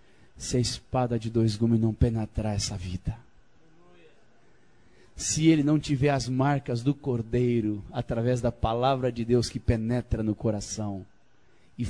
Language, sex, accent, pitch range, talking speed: Portuguese, male, Brazilian, 115-150 Hz, 140 wpm